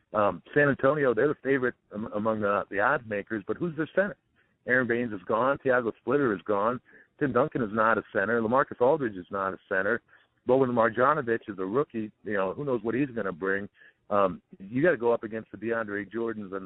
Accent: American